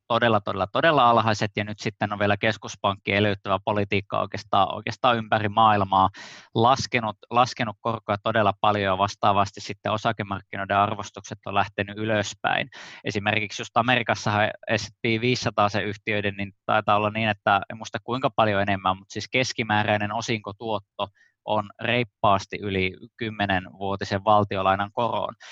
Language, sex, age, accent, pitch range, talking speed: Finnish, male, 20-39, native, 100-115 Hz, 125 wpm